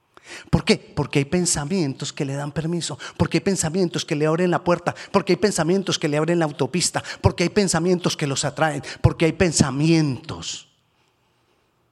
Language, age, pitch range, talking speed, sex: Spanish, 40-59, 125-170 Hz, 170 wpm, male